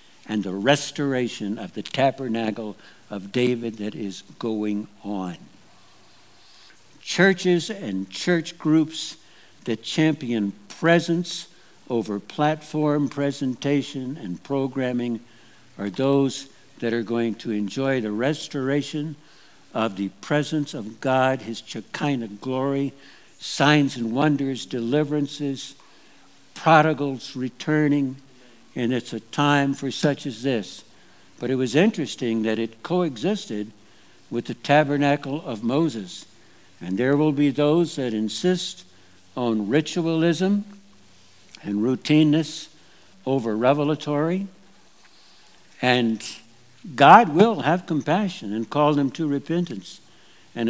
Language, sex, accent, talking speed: English, male, American, 110 wpm